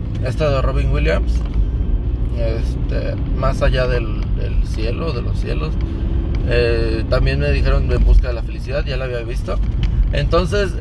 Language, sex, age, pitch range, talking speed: Spanish, male, 30-49, 90-110 Hz, 150 wpm